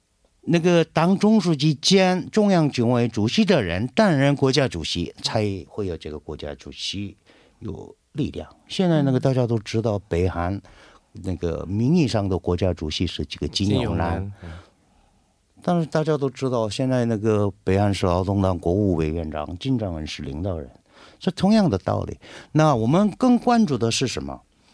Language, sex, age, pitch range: Korean, male, 50-69, 90-135 Hz